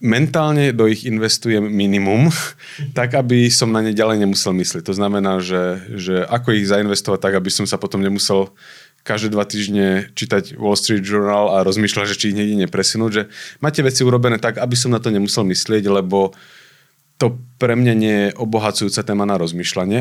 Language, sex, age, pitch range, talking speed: Slovak, male, 30-49, 100-125 Hz, 185 wpm